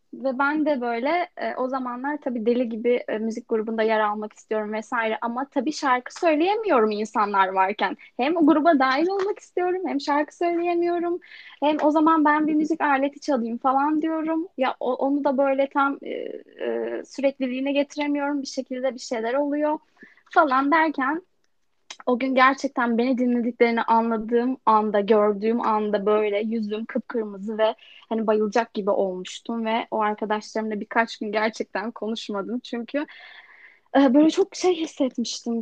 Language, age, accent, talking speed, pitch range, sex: Turkish, 10-29, native, 150 wpm, 220-290 Hz, female